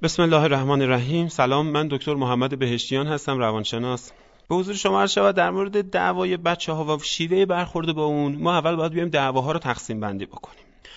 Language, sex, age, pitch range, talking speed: Persian, male, 30-49, 120-165 Hz, 185 wpm